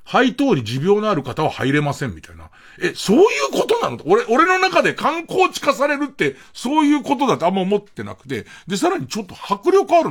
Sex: male